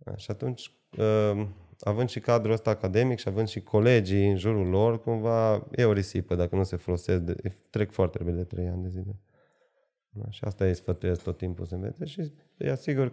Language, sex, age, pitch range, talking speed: Romanian, male, 30-49, 90-110 Hz, 185 wpm